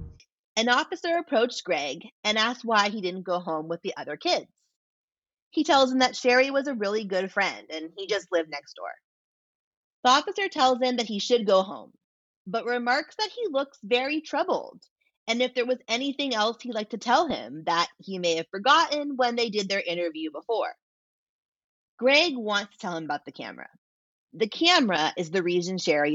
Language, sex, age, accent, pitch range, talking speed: English, female, 30-49, American, 185-270 Hz, 190 wpm